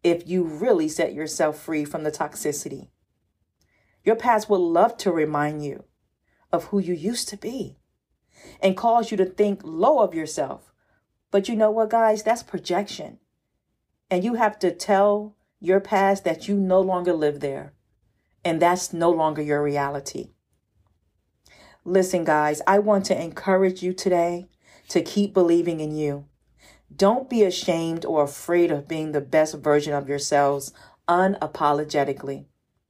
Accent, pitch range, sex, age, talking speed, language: American, 145-185 Hz, female, 40-59, 150 wpm, English